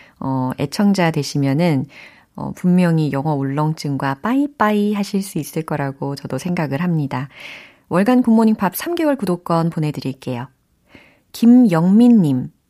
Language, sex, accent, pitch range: Korean, female, native, 145-205 Hz